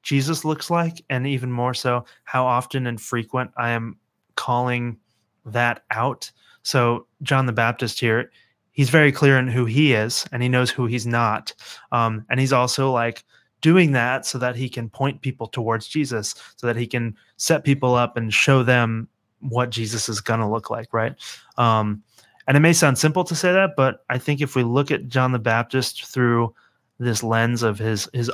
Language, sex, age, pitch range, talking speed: English, male, 30-49, 115-135 Hz, 195 wpm